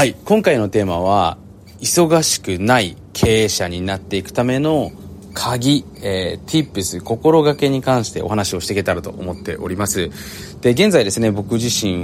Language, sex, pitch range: Japanese, male, 95-125 Hz